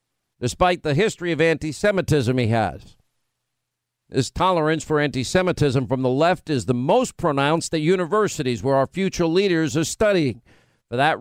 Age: 50-69